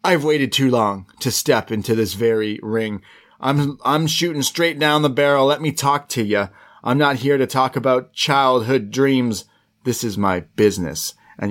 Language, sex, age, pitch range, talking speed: English, male, 30-49, 105-135 Hz, 180 wpm